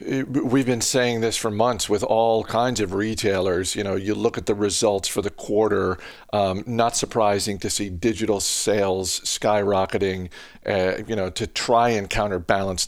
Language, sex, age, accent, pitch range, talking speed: English, male, 50-69, American, 100-125 Hz, 170 wpm